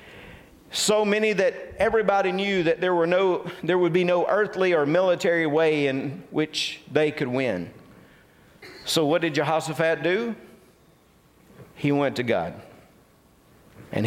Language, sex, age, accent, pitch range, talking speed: English, male, 50-69, American, 135-165 Hz, 135 wpm